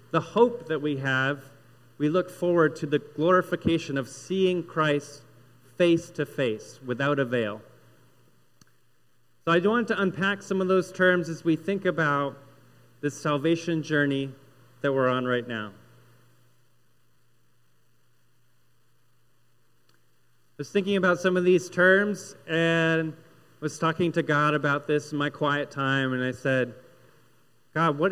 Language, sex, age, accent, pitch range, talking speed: English, male, 30-49, American, 125-175 Hz, 135 wpm